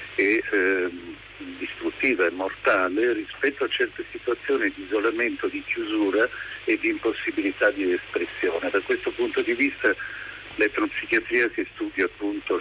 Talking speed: 130 wpm